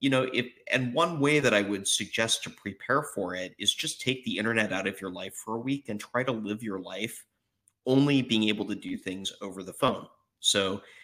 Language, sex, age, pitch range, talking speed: English, male, 30-49, 105-130 Hz, 230 wpm